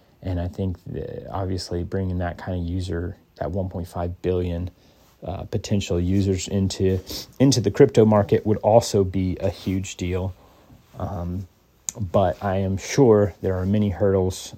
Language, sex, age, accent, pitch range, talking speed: English, male, 30-49, American, 90-105 Hz, 150 wpm